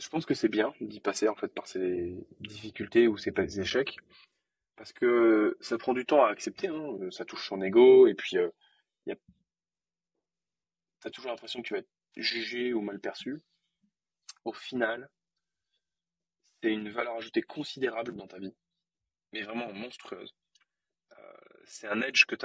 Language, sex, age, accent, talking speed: French, male, 20-39, French, 165 wpm